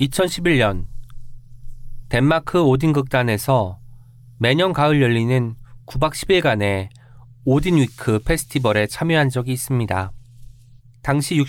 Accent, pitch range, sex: native, 115-145 Hz, male